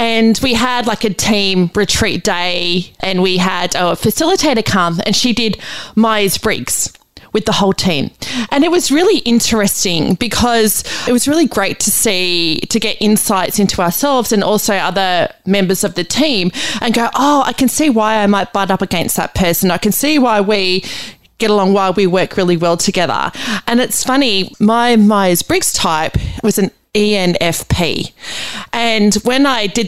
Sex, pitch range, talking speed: female, 185-230 Hz, 175 wpm